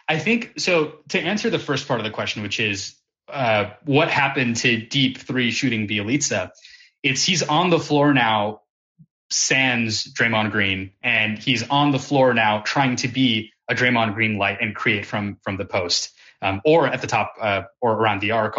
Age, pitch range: 20-39, 105-140 Hz